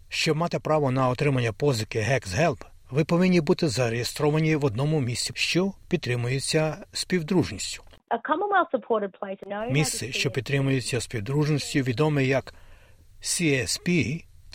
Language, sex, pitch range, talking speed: Ukrainian, male, 125-165 Hz, 105 wpm